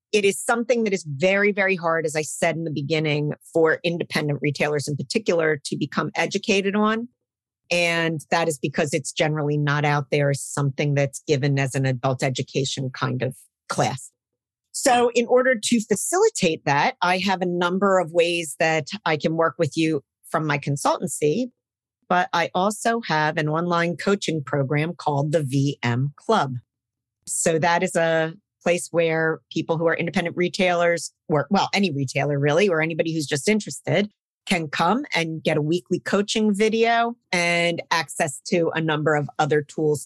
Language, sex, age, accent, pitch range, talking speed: English, female, 40-59, American, 150-195 Hz, 170 wpm